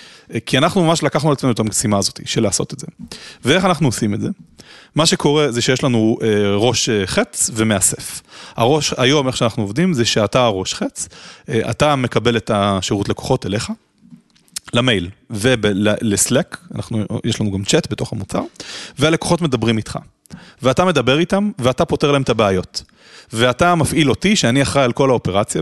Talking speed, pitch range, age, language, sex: 150 wpm, 105-145 Hz, 30-49, English, male